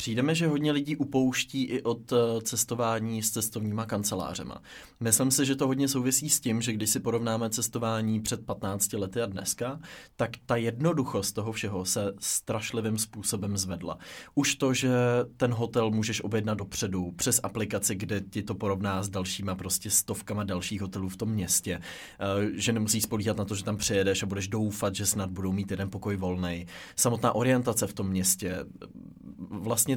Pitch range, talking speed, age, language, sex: 100-125 Hz, 170 wpm, 20-39, Czech, male